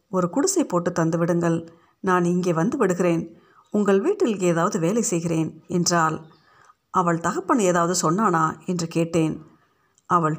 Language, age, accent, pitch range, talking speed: Tamil, 50-69, native, 165-195 Hz, 120 wpm